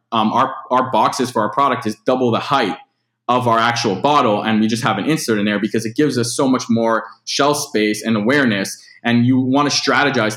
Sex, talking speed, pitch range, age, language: male, 225 wpm, 105-120 Hz, 20-39, English